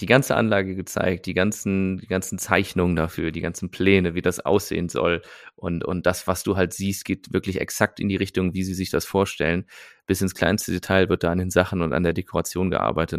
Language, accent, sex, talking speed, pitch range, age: German, German, male, 225 wpm, 85-100 Hz, 30-49